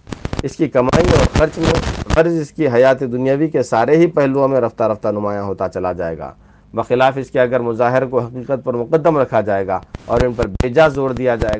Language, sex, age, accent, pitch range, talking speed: English, male, 50-69, Indian, 110-145 Hz, 220 wpm